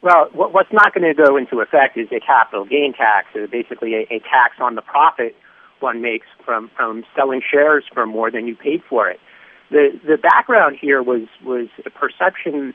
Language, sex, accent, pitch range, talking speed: English, male, American, 120-170 Hz, 200 wpm